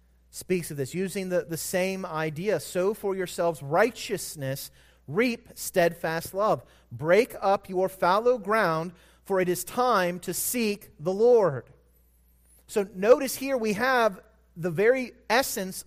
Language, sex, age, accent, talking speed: English, male, 30-49, American, 135 wpm